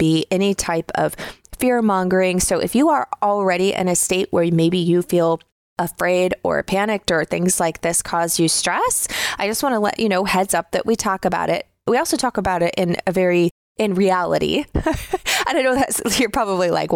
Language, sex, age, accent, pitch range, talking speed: English, female, 20-39, American, 170-205 Hz, 205 wpm